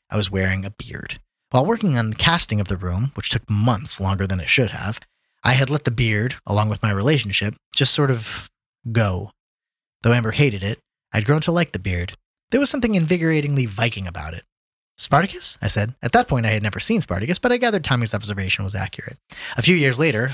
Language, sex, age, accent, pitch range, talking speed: English, male, 30-49, American, 105-150 Hz, 215 wpm